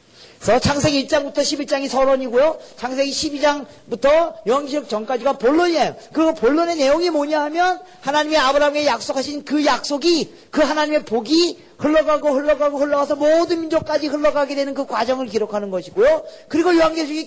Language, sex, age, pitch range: Korean, male, 40-59, 200-300 Hz